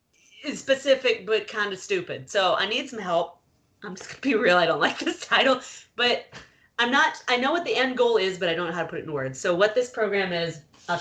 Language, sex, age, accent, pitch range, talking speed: English, female, 30-49, American, 180-245 Hz, 250 wpm